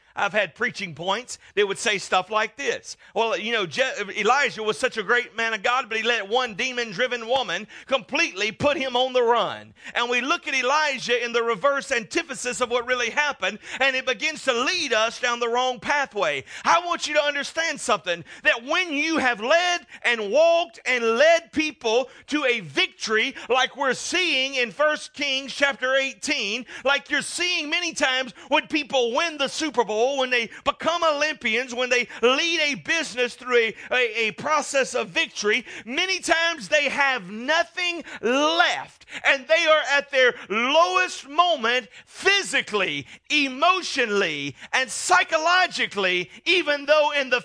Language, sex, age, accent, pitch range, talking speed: English, male, 40-59, American, 235-305 Hz, 165 wpm